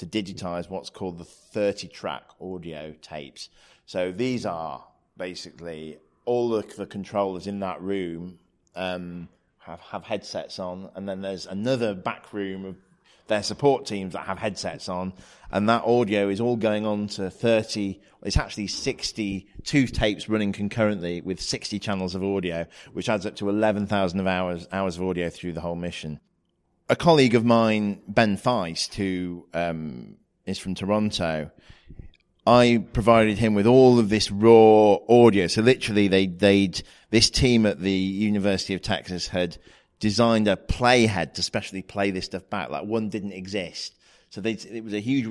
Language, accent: English, British